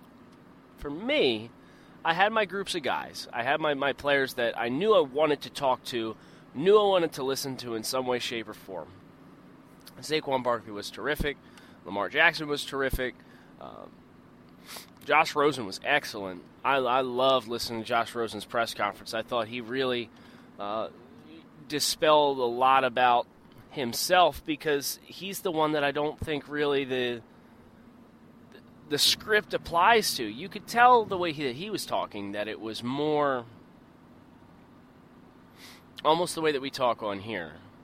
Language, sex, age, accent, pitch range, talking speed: English, male, 20-39, American, 115-155 Hz, 160 wpm